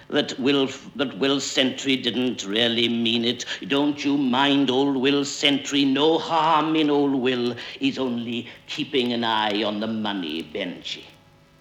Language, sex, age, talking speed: English, male, 60-79, 150 wpm